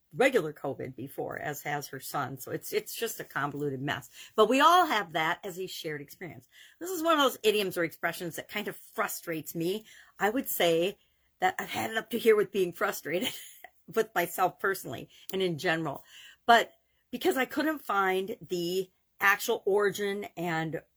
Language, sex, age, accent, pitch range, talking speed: English, female, 50-69, American, 165-220 Hz, 185 wpm